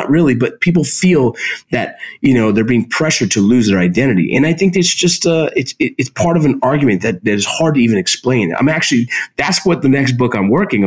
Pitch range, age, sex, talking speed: 100-145 Hz, 30-49, male, 235 wpm